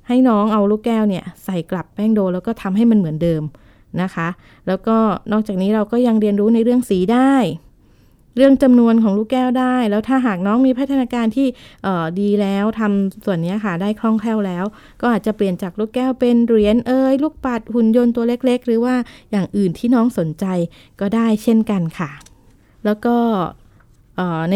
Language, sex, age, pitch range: Thai, female, 20-39, 190-235 Hz